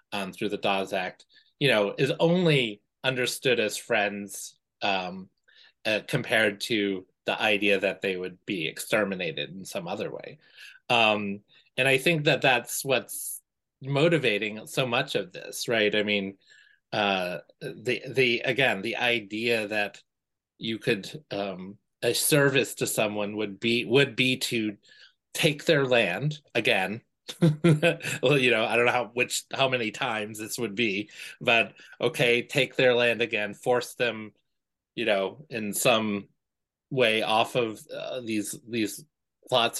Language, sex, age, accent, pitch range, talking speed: English, male, 30-49, American, 105-135 Hz, 150 wpm